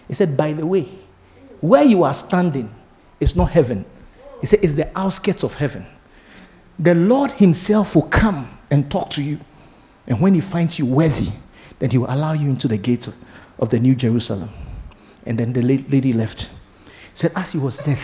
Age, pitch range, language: 50-69, 145-225 Hz, Spanish